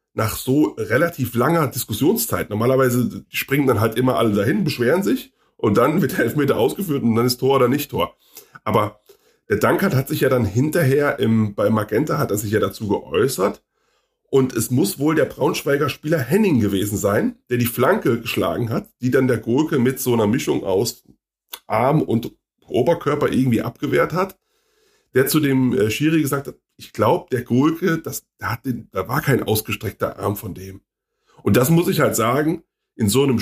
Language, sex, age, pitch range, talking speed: German, male, 30-49, 110-140 Hz, 185 wpm